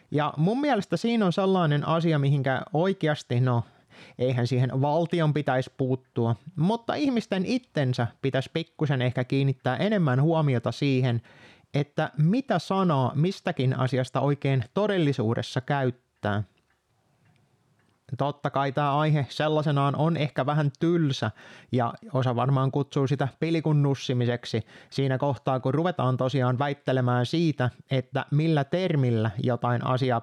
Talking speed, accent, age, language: 120 wpm, native, 20-39, Finnish